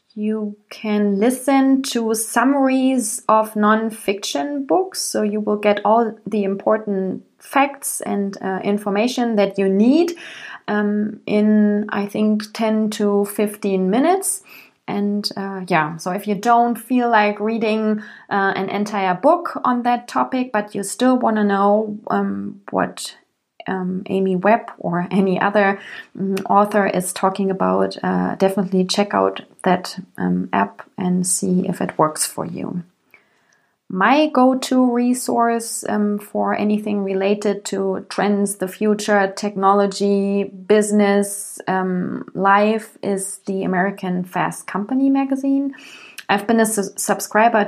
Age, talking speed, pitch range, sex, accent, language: 20-39, 135 wpm, 195-220 Hz, female, German, English